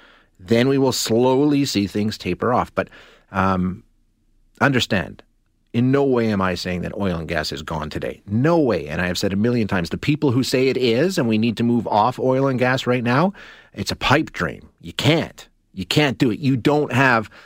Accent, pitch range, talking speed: American, 100-130 Hz, 215 wpm